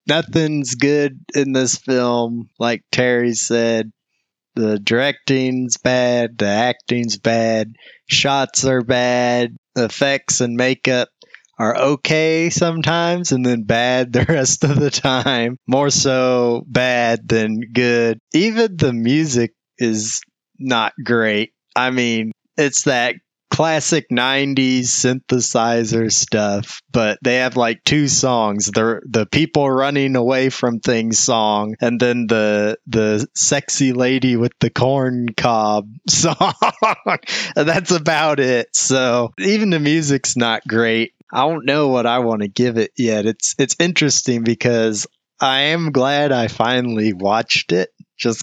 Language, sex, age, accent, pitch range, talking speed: English, male, 20-39, American, 115-140 Hz, 130 wpm